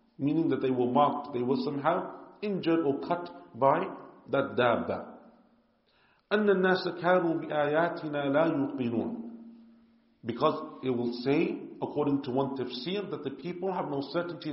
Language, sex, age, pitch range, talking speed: English, male, 50-69, 135-175 Hz, 135 wpm